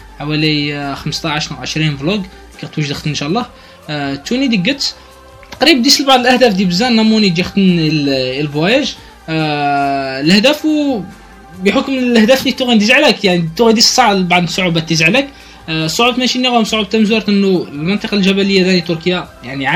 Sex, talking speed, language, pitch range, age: male, 155 wpm, Arabic, 165-220 Hz, 20-39